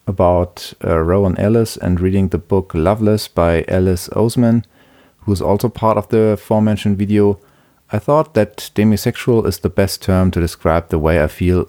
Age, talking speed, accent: 40-59, 175 wpm, German